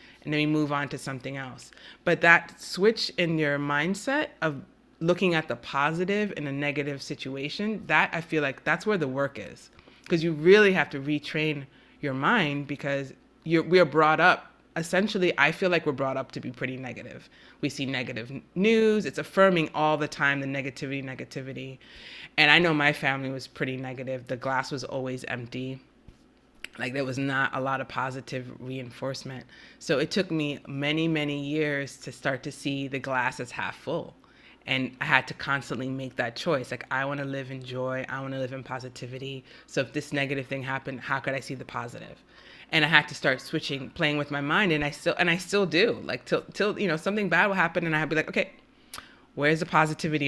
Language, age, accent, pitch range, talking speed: English, 30-49, American, 135-165 Hz, 210 wpm